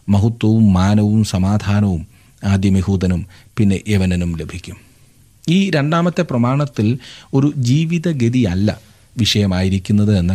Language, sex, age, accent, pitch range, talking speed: Malayalam, male, 30-49, native, 100-130 Hz, 80 wpm